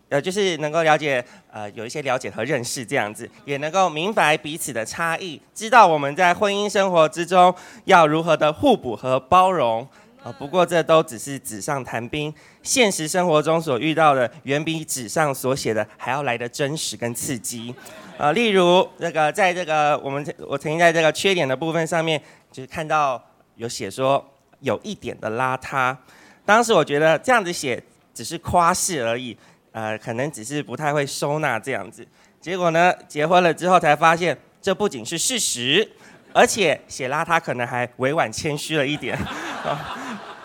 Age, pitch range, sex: 20-39, 135-180 Hz, male